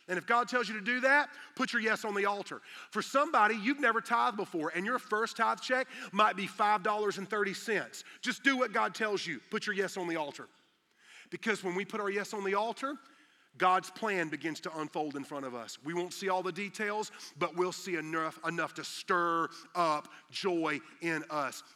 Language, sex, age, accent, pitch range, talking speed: English, male, 40-59, American, 155-220 Hz, 205 wpm